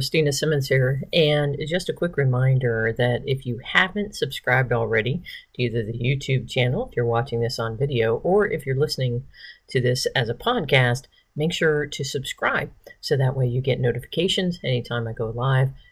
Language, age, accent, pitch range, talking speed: English, 50-69, American, 125-155 Hz, 180 wpm